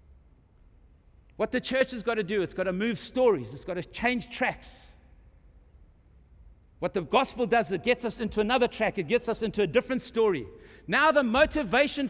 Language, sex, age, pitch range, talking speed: English, male, 60-79, 200-255 Hz, 185 wpm